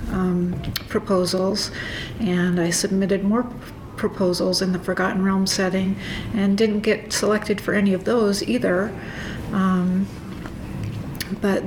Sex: female